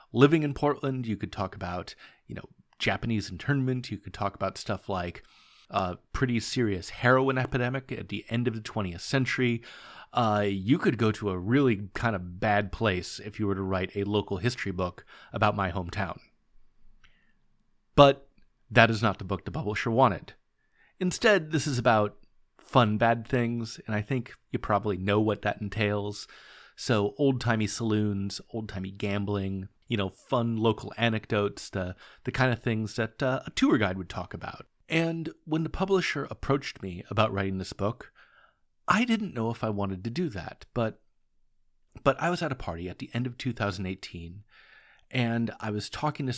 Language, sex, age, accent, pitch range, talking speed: English, male, 30-49, American, 100-125 Hz, 175 wpm